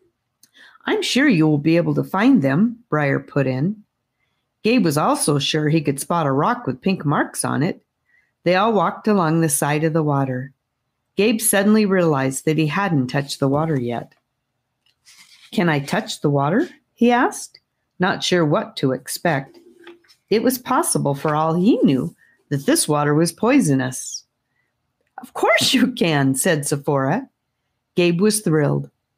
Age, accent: 40-59, American